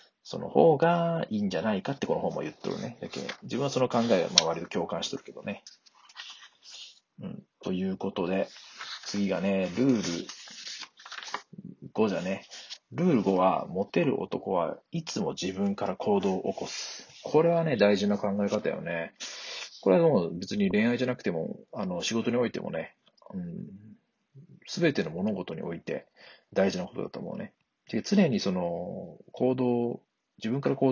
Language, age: Japanese, 40-59